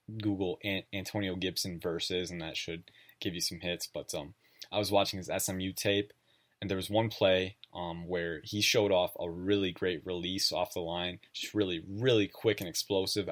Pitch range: 90-105 Hz